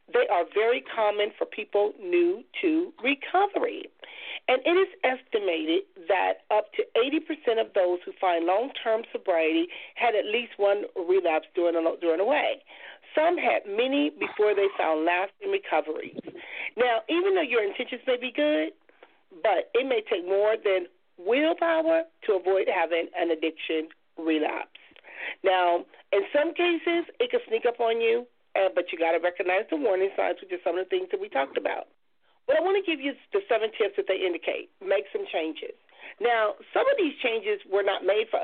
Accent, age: American, 40-59